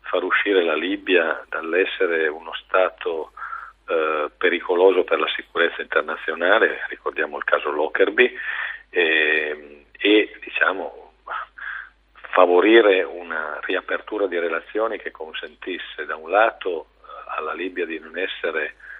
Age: 50-69